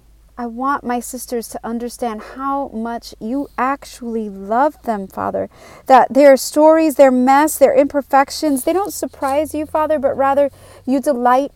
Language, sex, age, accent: English, female, 30-49, American